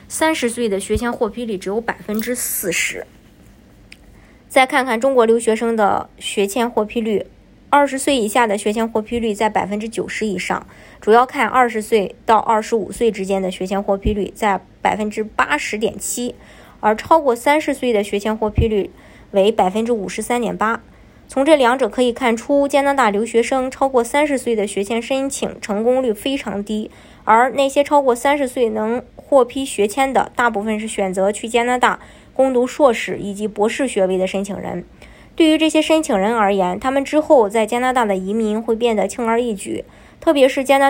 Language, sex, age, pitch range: Chinese, male, 20-39, 210-260 Hz